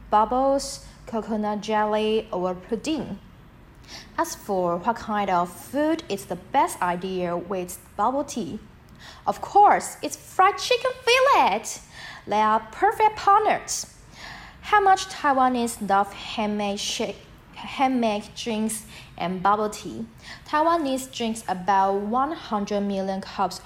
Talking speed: 110 wpm